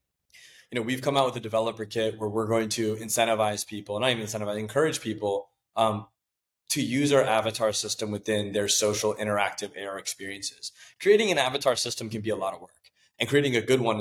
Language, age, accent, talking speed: English, 20-39, American, 205 wpm